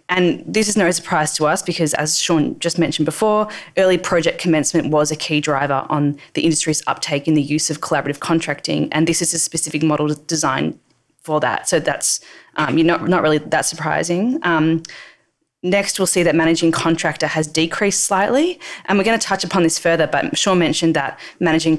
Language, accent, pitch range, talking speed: English, Australian, 150-170 Hz, 195 wpm